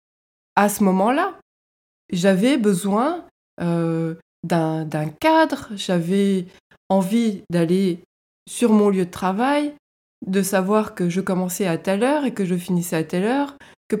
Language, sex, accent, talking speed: French, female, French, 135 wpm